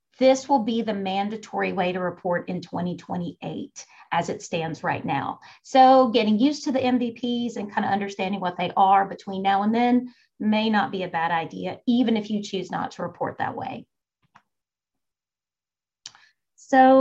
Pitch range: 195-245 Hz